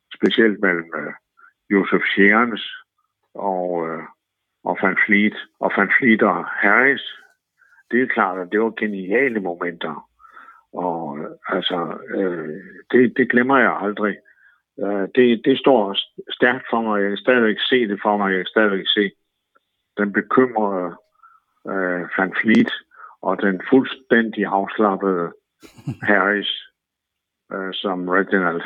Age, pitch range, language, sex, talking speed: 60-79, 95-125 Hz, Danish, male, 130 wpm